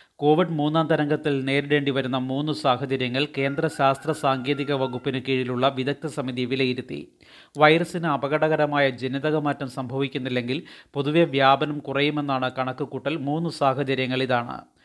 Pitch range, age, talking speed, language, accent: 135-150 Hz, 30-49, 110 wpm, Malayalam, native